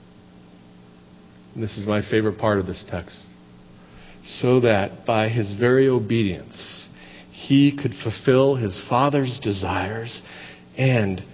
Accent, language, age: American, English, 50-69